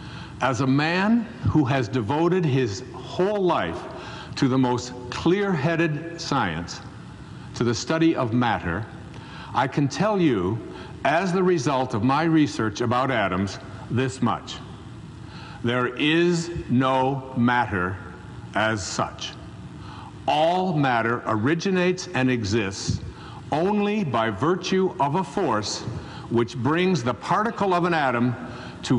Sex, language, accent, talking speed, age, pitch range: male, English, American, 120 wpm, 60-79, 120-170 Hz